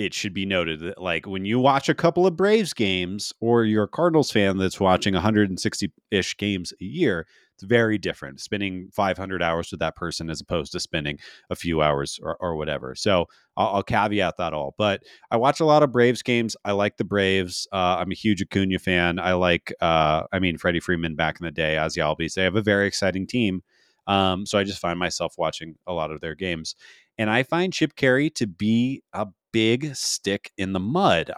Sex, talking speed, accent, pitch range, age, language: male, 220 wpm, American, 95-125 Hz, 30-49, English